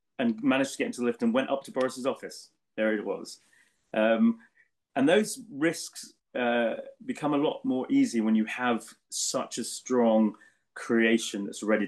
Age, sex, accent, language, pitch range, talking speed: 30-49, male, British, English, 105-135 Hz, 175 wpm